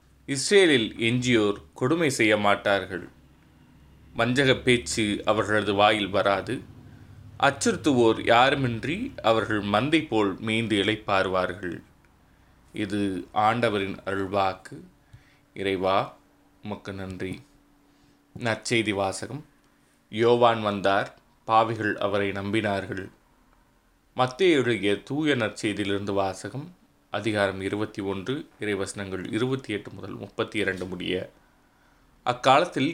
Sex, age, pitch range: male, 20-39, 100-120 Hz